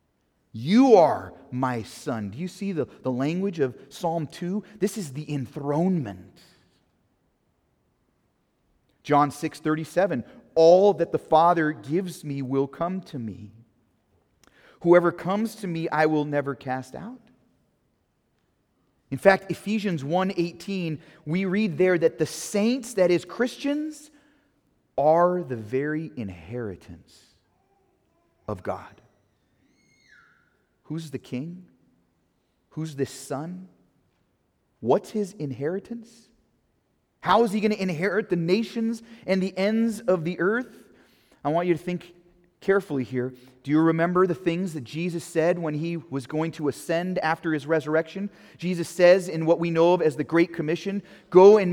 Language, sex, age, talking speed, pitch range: English, male, 30-49, 135 wpm, 145-195 Hz